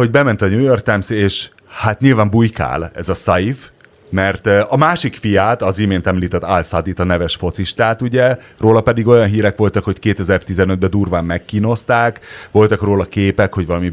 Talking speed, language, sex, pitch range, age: 170 wpm, Hungarian, male, 80-105 Hz, 30-49